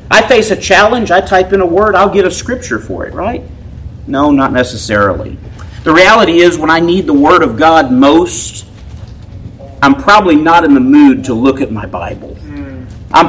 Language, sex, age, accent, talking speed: English, male, 40-59, American, 190 wpm